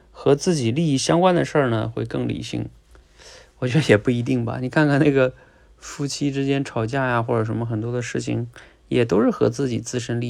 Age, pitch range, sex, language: 20-39, 110-145 Hz, male, Chinese